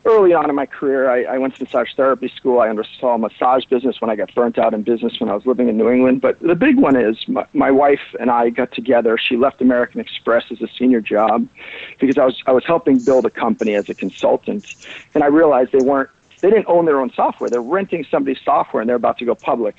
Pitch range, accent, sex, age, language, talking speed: 130-180 Hz, American, male, 50-69, English, 260 wpm